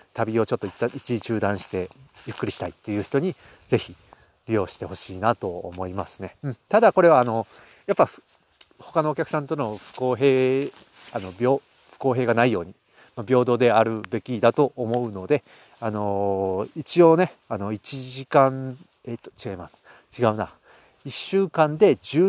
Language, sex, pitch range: Japanese, male, 100-135 Hz